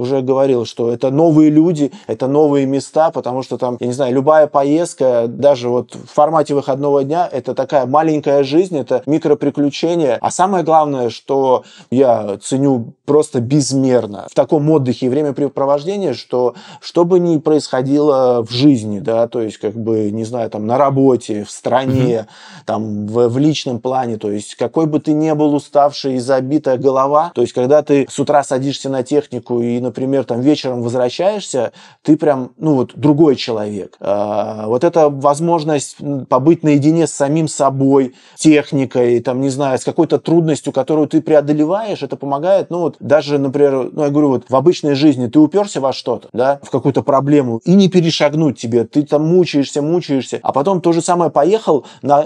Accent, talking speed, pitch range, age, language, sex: native, 175 wpm, 125-155 Hz, 20-39, Russian, male